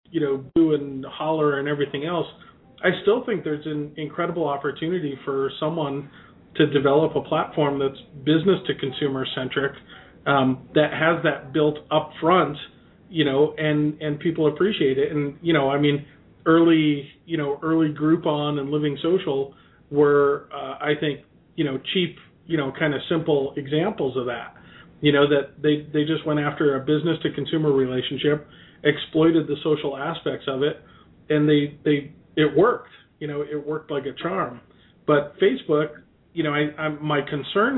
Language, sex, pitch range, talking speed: English, male, 145-160 Hz, 170 wpm